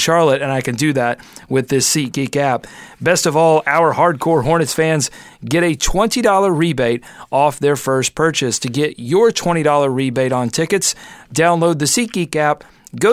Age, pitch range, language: 40-59, 135-165 Hz, English